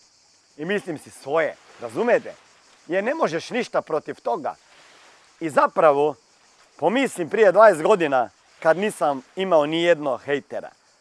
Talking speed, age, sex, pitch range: 120 wpm, 40-59, male, 150-220 Hz